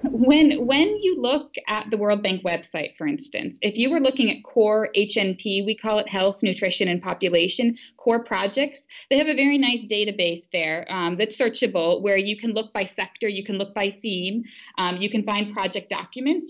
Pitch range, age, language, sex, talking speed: 185-230 Hz, 20-39, English, female, 195 wpm